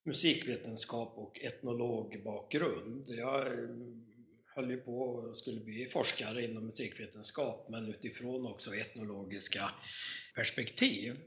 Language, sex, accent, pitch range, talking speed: Swedish, male, native, 110-145 Hz, 95 wpm